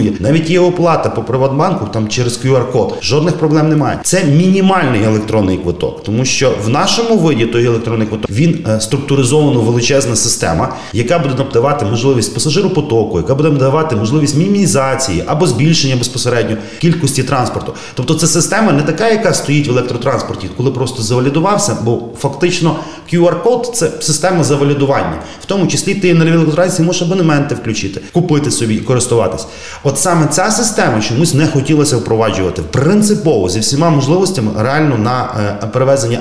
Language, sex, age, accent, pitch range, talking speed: Ukrainian, male, 30-49, native, 120-170 Hz, 145 wpm